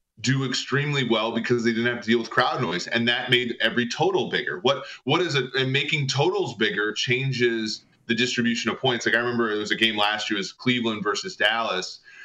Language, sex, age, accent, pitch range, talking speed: English, male, 30-49, American, 115-135 Hz, 215 wpm